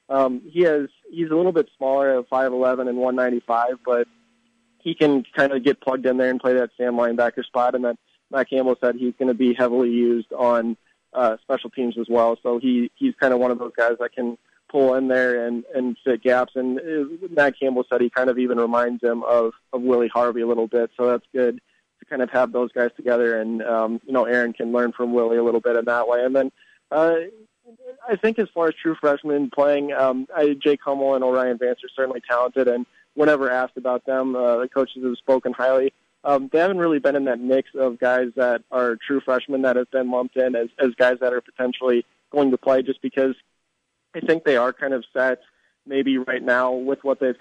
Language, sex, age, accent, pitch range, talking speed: English, male, 20-39, American, 120-135 Hz, 230 wpm